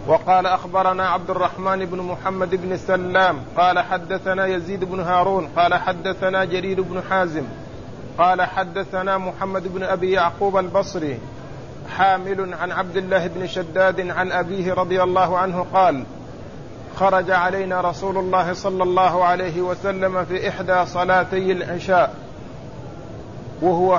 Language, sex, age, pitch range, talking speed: Arabic, male, 50-69, 180-190 Hz, 125 wpm